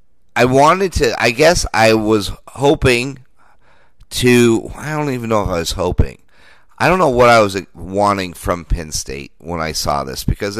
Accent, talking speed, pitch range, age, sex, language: American, 180 wpm, 80-105 Hz, 30-49, male, English